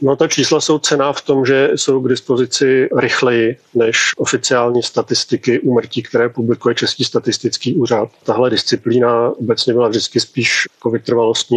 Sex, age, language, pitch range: male, 40-59, Czech, 115-125 Hz